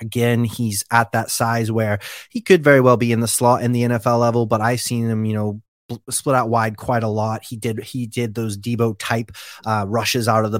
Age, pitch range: 20-39, 105-120 Hz